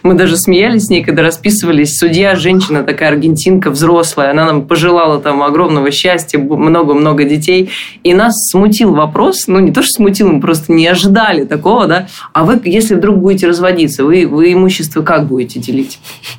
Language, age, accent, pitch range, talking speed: Russian, 20-39, native, 155-195 Hz, 170 wpm